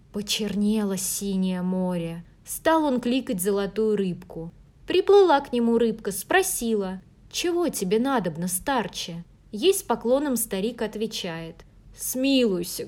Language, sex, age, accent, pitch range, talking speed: Russian, female, 20-39, native, 180-235 Hz, 105 wpm